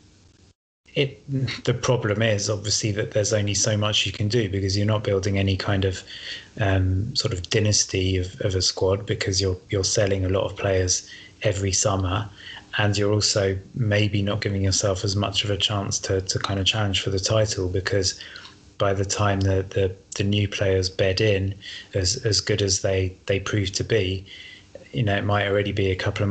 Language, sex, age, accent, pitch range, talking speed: English, male, 20-39, British, 95-105 Hz, 200 wpm